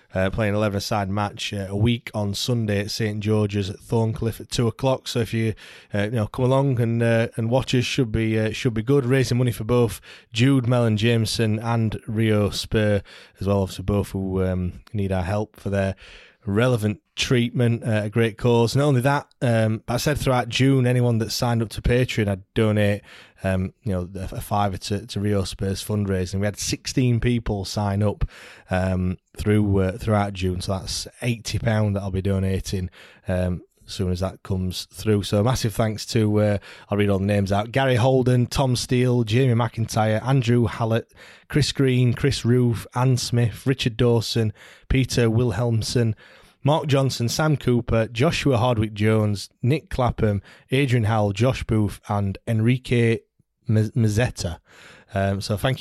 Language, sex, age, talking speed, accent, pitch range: English, male, 20-39, 180 wpm, British, 100-120 Hz